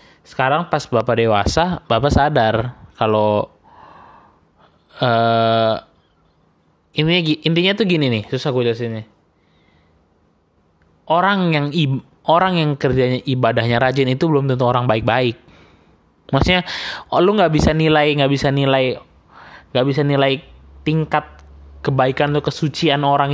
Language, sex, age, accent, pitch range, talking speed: Indonesian, male, 20-39, native, 115-150 Hz, 120 wpm